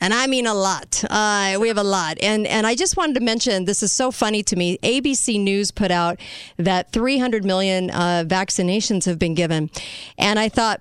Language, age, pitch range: English, 50-69, 185-245 Hz